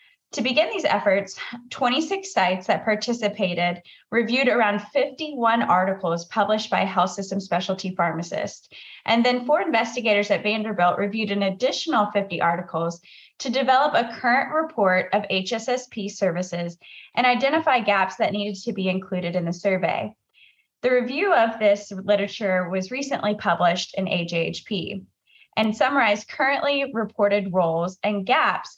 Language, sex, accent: English, female, American